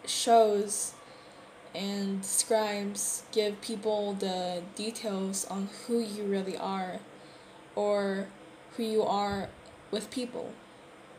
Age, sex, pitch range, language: 10-29, female, 205-235 Hz, Korean